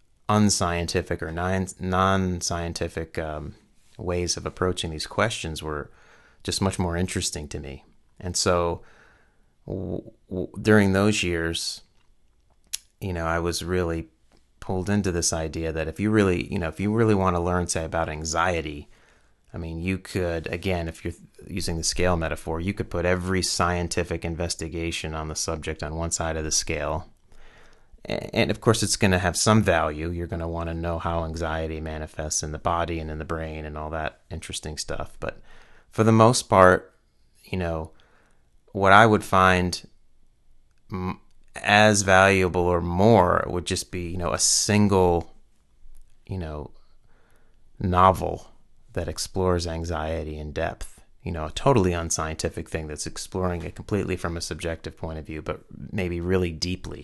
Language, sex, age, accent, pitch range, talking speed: English, male, 30-49, American, 80-95 Hz, 160 wpm